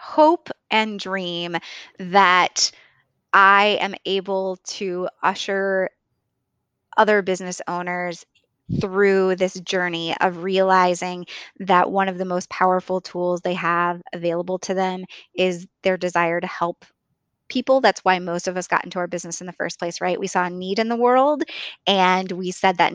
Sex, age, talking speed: female, 20-39, 155 wpm